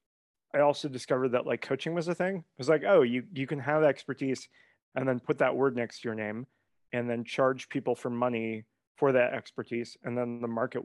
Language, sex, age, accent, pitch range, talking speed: English, male, 30-49, American, 115-135 Hz, 220 wpm